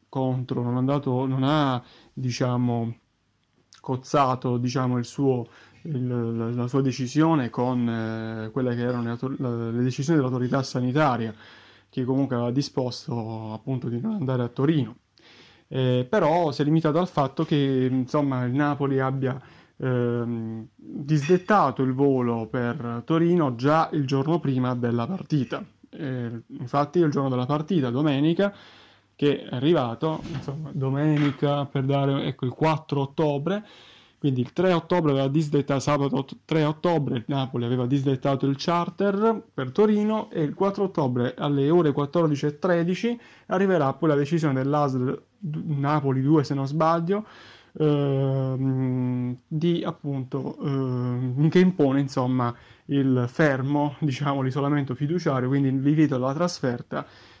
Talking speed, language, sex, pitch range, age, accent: 135 wpm, Italian, male, 125-155 Hz, 20-39, native